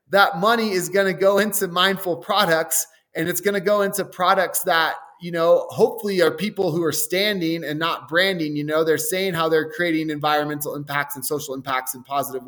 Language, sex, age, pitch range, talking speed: English, male, 20-39, 145-180 Hz, 200 wpm